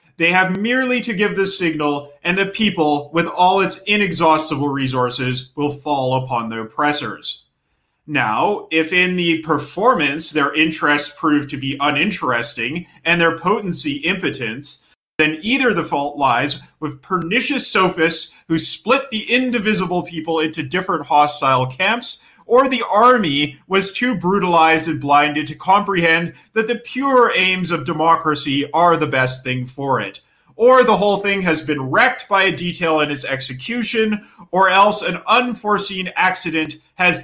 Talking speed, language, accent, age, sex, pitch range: 150 wpm, English, American, 30-49, male, 150-200 Hz